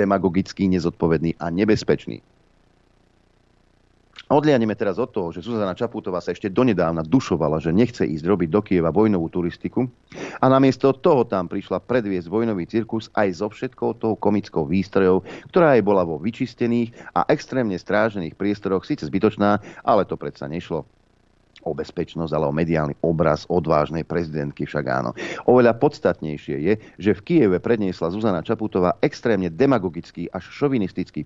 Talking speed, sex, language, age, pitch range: 145 wpm, male, Slovak, 40-59, 90-115 Hz